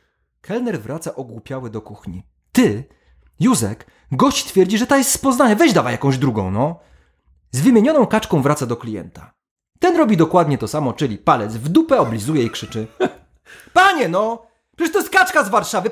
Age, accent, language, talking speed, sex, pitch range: 30-49, native, Polish, 170 wpm, male, 140-235 Hz